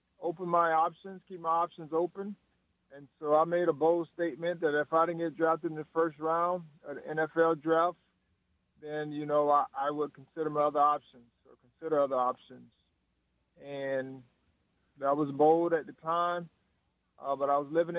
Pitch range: 140-165 Hz